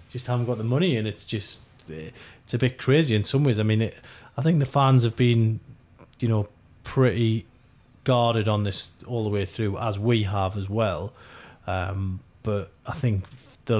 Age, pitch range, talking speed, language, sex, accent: 30-49, 100-120 Hz, 190 wpm, English, male, British